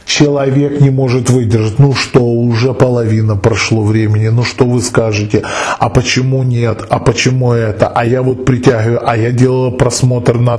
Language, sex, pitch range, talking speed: Russian, male, 105-135 Hz, 165 wpm